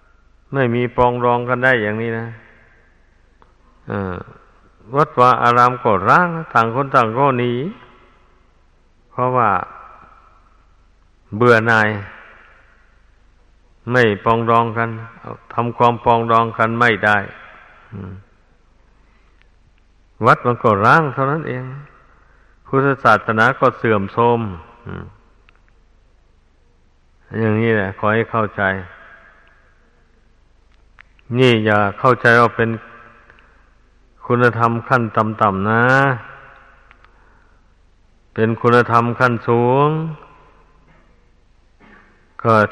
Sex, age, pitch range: male, 60-79, 95-120 Hz